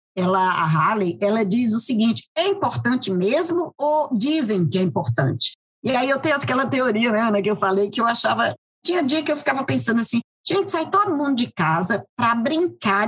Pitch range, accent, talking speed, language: 175-245 Hz, Brazilian, 200 wpm, Portuguese